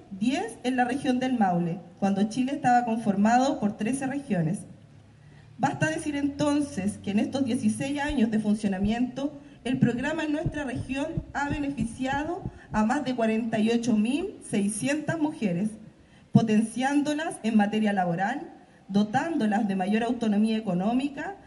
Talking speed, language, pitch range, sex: 125 wpm, Spanish, 220-275 Hz, female